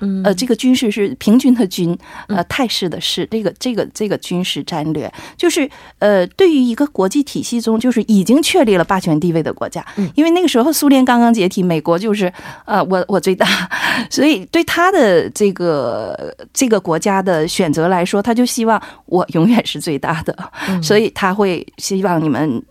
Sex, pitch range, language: female, 180-250 Hz, Korean